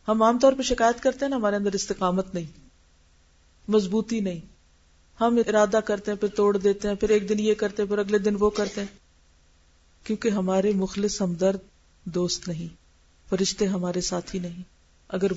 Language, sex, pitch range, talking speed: Urdu, female, 170-240 Hz, 170 wpm